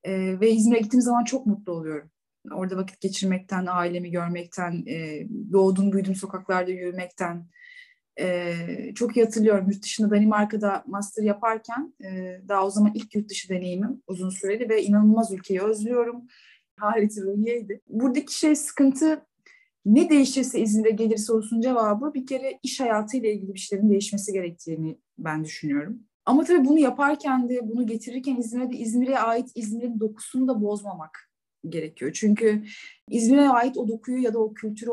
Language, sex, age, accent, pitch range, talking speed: Turkish, female, 30-49, native, 200-245 Hz, 150 wpm